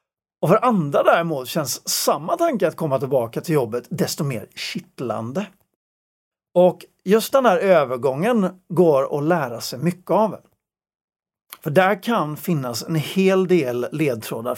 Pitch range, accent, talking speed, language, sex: 135-190 Hz, native, 140 wpm, Swedish, male